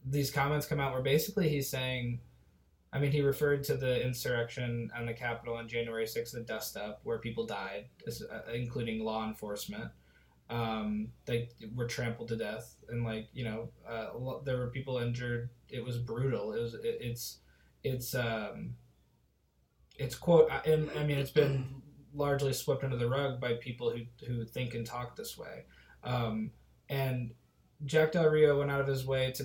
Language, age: English, 20-39